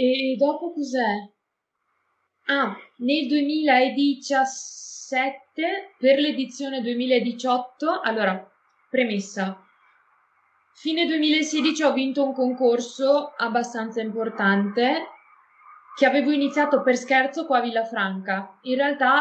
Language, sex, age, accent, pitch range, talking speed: Italian, female, 20-39, native, 210-280 Hz, 90 wpm